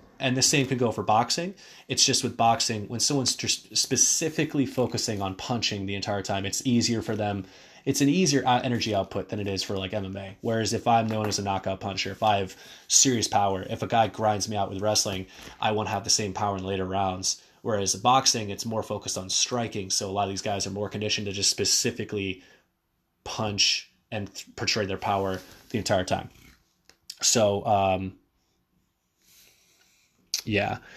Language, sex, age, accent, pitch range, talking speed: English, male, 20-39, American, 100-120 Hz, 185 wpm